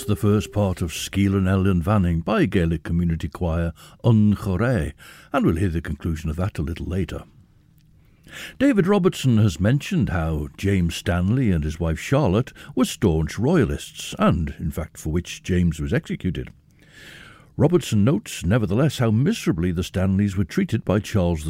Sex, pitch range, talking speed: male, 85-125 Hz, 155 wpm